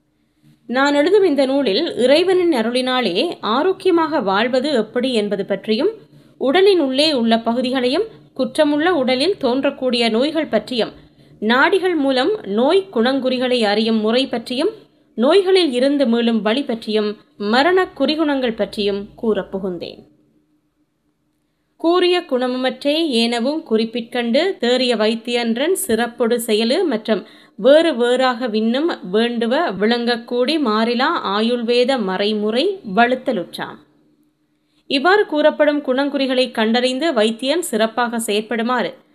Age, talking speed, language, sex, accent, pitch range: 20-39, 85 wpm, Tamil, female, native, 225-295 Hz